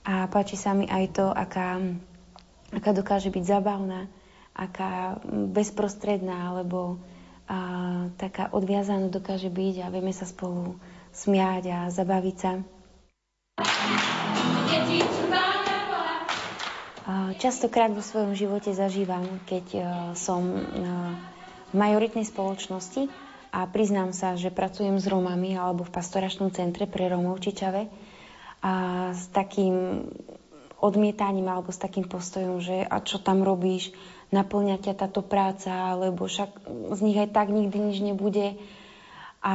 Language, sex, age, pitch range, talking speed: Slovak, female, 20-39, 185-205 Hz, 115 wpm